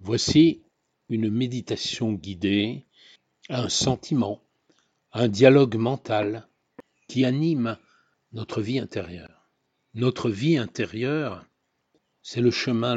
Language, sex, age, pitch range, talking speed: French, male, 60-79, 105-130 Hz, 100 wpm